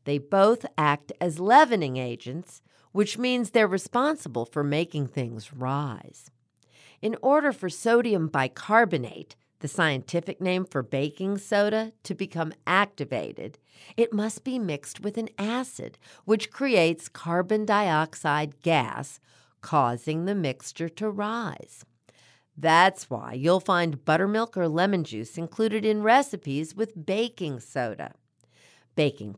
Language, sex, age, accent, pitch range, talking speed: English, female, 50-69, American, 135-215 Hz, 125 wpm